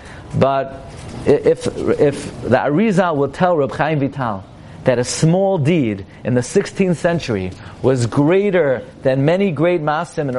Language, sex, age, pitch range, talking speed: English, male, 40-59, 105-165 Hz, 145 wpm